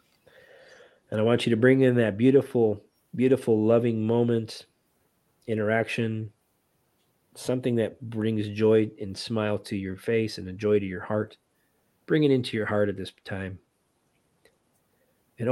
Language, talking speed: English, 145 wpm